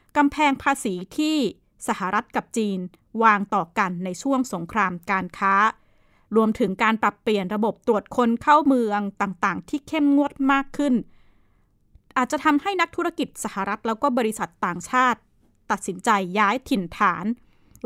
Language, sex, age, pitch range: Thai, female, 20-39, 200-255 Hz